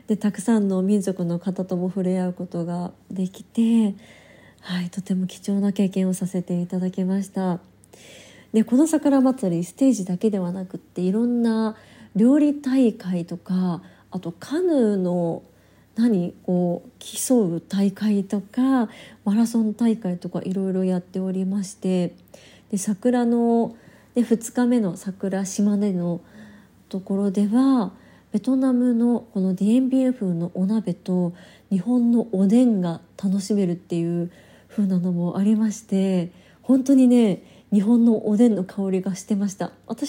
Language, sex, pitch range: Japanese, female, 185-230 Hz